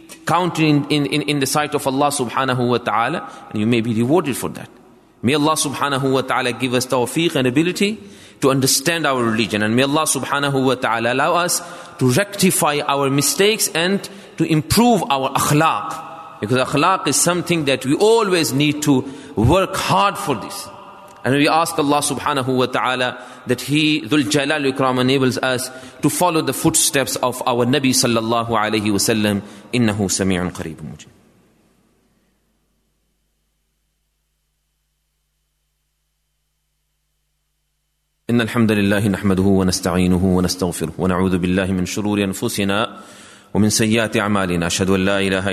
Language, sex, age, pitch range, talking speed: English, male, 30-49, 100-150 Hz, 150 wpm